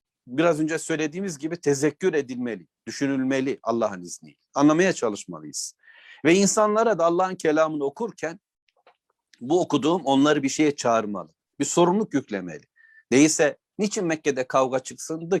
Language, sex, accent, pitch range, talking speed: Turkish, male, native, 135-180 Hz, 120 wpm